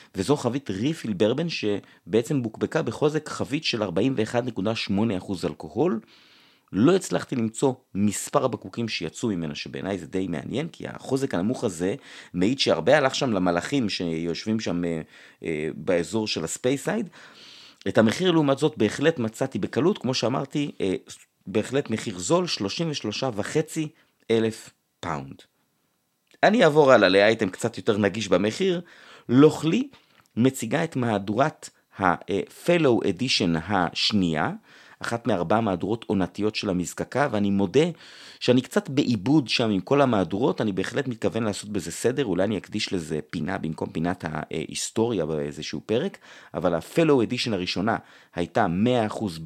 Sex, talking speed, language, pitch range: male, 130 wpm, Hebrew, 95-140 Hz